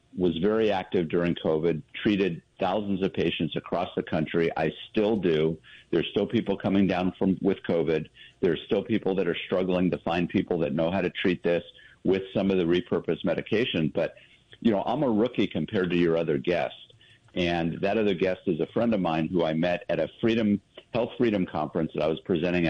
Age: 50-69